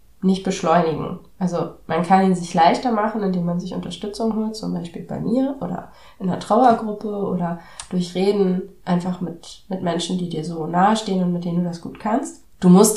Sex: female